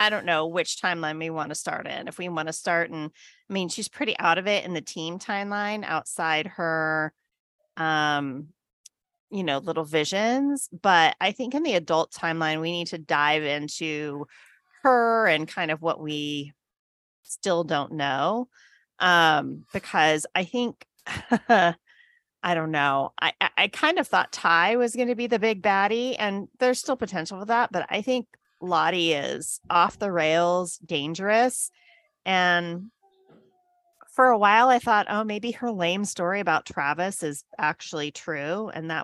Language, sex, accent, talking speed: English, female, American, 170 wpm